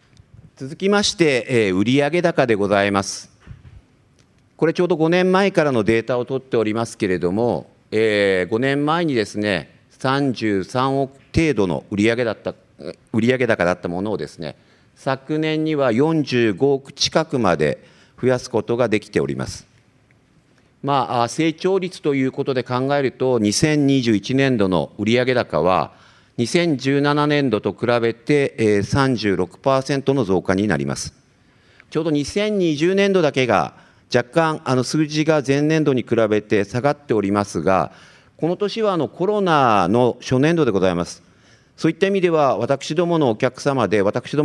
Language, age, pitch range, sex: Japanese, 50-69, 110-155 Hz, male